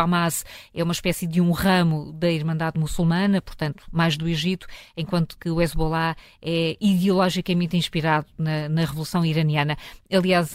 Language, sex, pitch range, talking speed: Portuguese, female, 165-185 Hz, 155 wpm